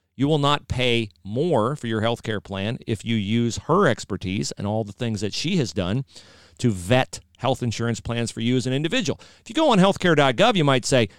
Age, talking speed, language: 40-59, 220 wpm, English